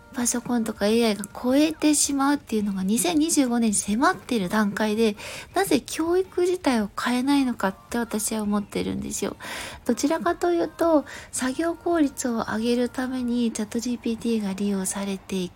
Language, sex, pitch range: Japanese, female, 220-310 Hz